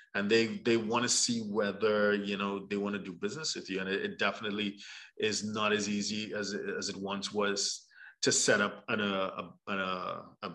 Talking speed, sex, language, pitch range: 205 wpm, male, English, 100-125 Hz